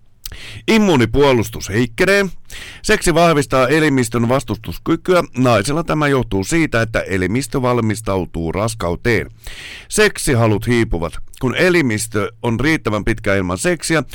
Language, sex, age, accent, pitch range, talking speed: Finnish, male, 50-69, native, 105-145 Hz, 100 wpm